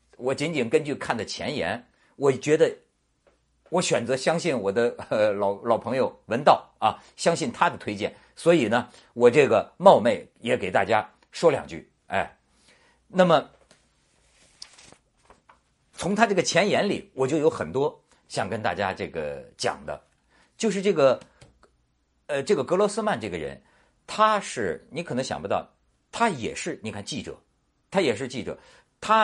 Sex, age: male, 50-69